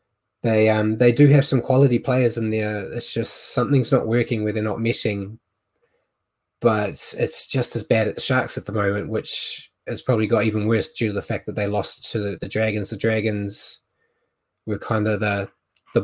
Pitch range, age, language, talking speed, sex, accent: 105-120 Hz, 20-39, English, 200 wpm, male, Australian